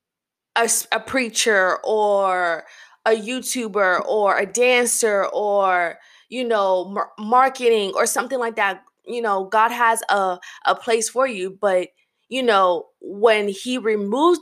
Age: 20-39